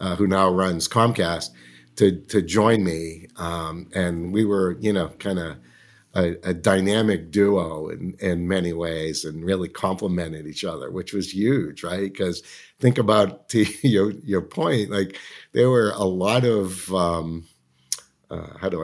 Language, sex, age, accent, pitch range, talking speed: English, male, 50-69, American, 85-105 Hz, 160 wpm